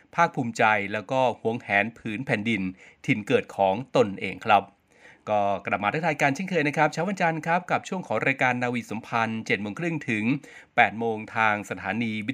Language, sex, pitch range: Thai, male, 110-140 Hz